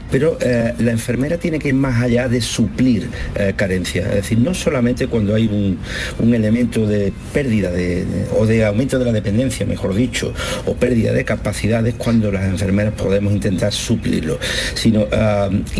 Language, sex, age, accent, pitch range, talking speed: Spanish, male, 50-69, Spanish, 100-125 Hz, 175 wpm